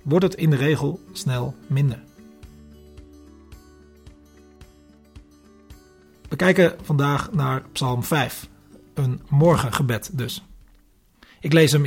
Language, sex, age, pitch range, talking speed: Dutch, male, 40-59, 125-160 Hz, 95 wpm